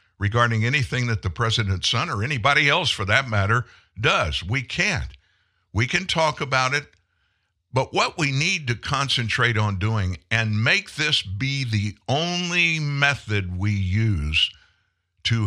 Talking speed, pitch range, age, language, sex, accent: 145 wpm, 90-120 Hz, 60-79, English, male, American